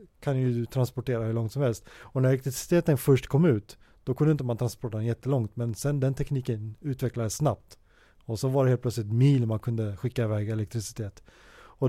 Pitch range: 110-135 Hz